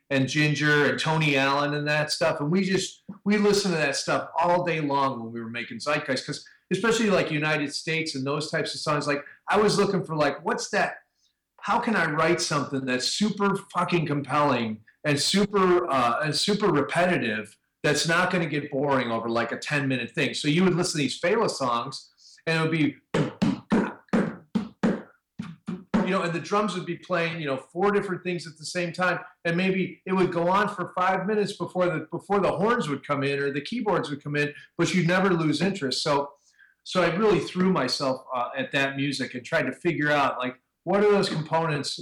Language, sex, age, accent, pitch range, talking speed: English, male, 40-59, American, 135-180 Hz, 205 wpm